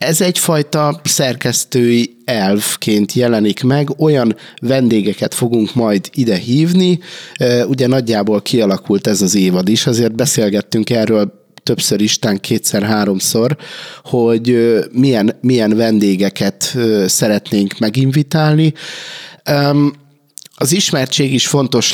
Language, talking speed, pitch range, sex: Hungarian, 95 wpm, 110-140 Hz, male